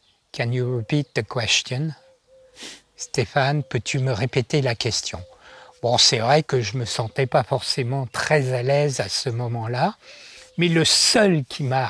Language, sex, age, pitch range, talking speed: French, male, 60-79, 115-145 Hz, 170 wpm